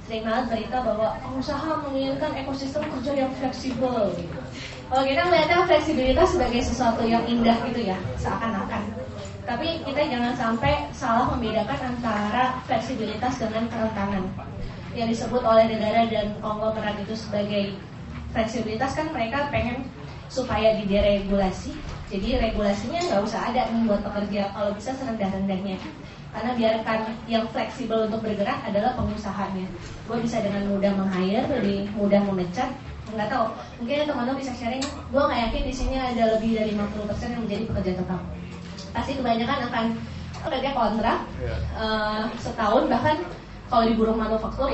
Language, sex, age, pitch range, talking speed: Indonesian, female, 20-39, 205-255 Hz, 135 wpm